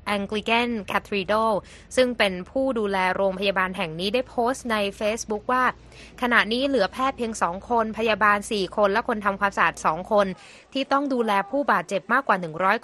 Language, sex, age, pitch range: Thai, female, 20-39, 190-235 Hz